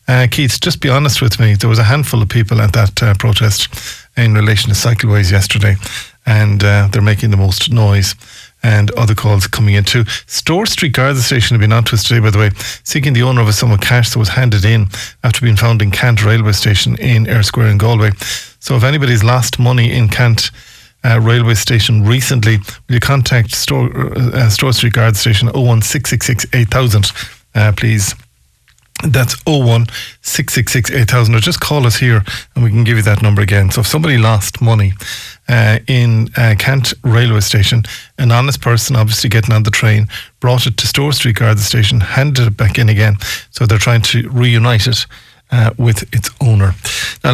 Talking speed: 195 wpm